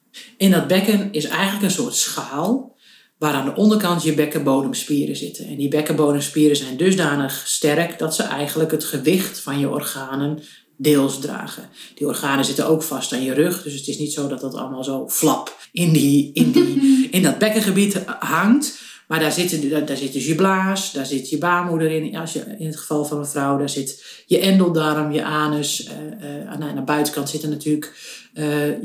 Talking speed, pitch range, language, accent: 190 wpm, 145-180 Hz, Dutch, Dutch